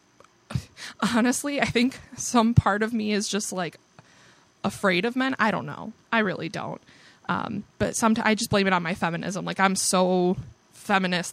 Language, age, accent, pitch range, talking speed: English, 20-39, American, 190-230 Hz, 175 wpm